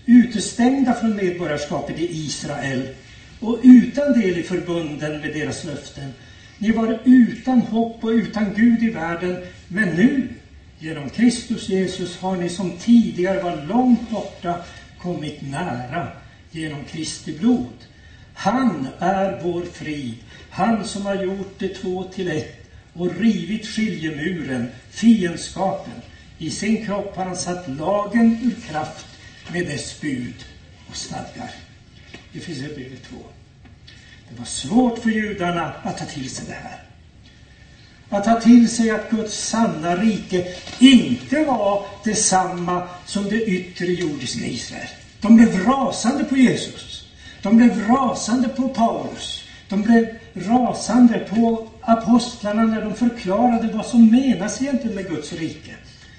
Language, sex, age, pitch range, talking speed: Swedish, male, 60-79, 160-230 Hz, 135 wpm